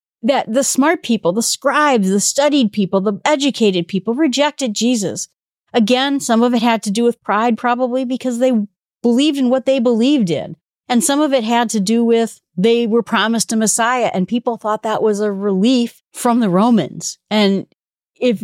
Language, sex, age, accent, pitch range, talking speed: English, female, 40-59, American, 185-245 Hz, 185 wpm